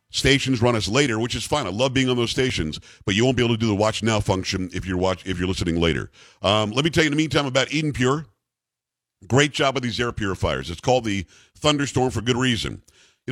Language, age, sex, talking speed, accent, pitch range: English, 50-69, male, 250 wpm, American, 110-135 Hz